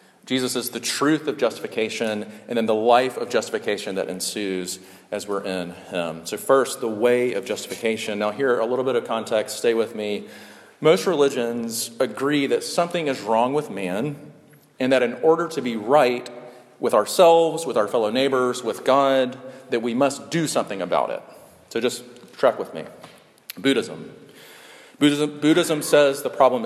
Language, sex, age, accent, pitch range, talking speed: English, male, 40-59, American, 110-140 Hz, 170 wpm